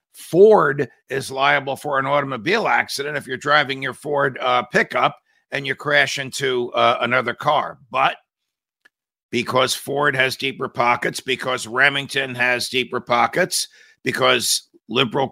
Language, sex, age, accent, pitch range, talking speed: English, male, 50-69, American, 125-155 Hz, 135 wpm